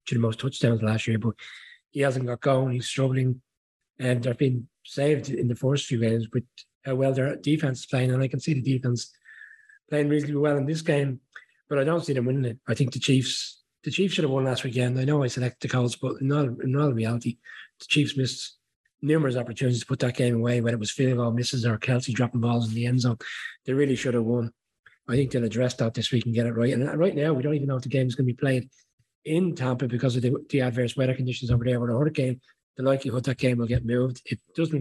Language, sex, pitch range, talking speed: English, male, 120-135 Hz, 260 wpm